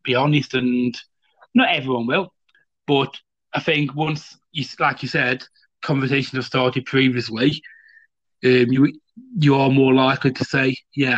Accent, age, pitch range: British, 30-49, 125-150 Hz